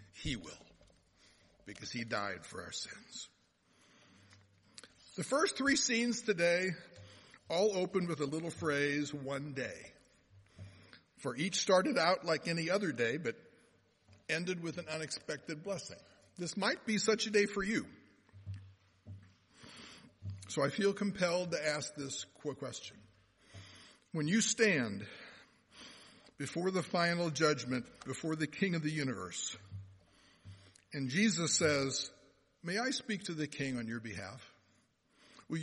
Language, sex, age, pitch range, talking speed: English, male, 60-79, 100-170 Hz, 130 wpm